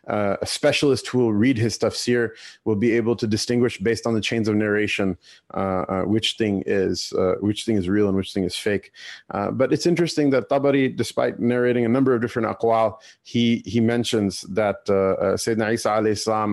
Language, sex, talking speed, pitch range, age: English, male, 205 wpm, 100-120 Hz, 30-49